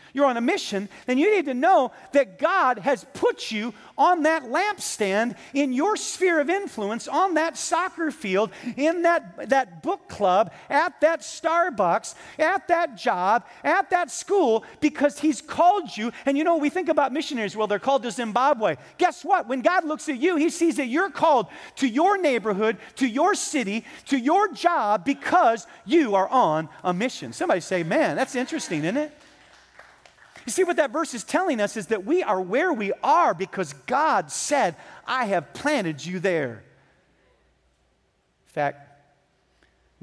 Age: 40-59